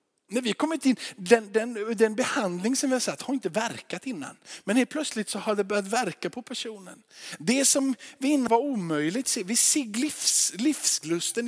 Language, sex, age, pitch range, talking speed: Swedish, male, 50-69, 140-230 Hz, 185 wpm